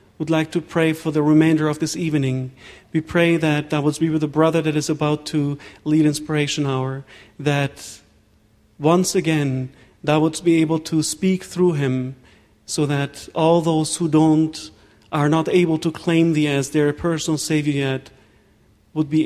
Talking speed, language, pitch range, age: 175 wpm, English, 135-160 Hz, 40-59